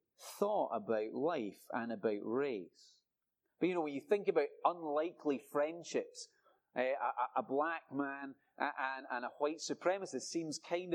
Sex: male